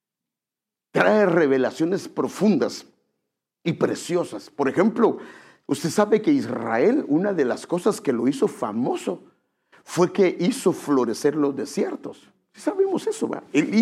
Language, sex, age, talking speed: English, male, 50-69, 115 wpm